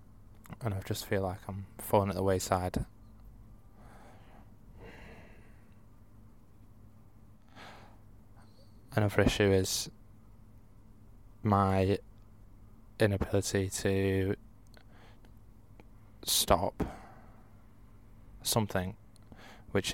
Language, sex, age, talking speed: English, male, 20-39, 55 wpm